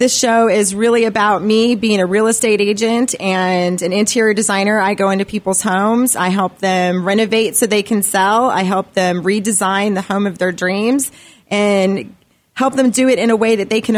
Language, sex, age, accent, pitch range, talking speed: English, female, 30-49, American, 190-225 Hz, 205 wpm